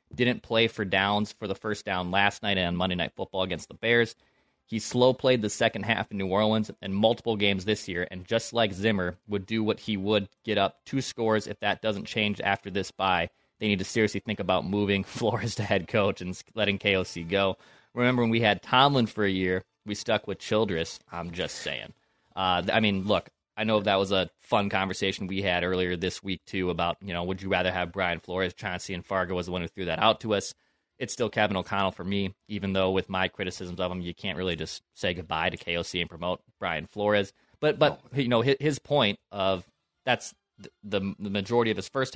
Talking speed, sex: 225 wpm, male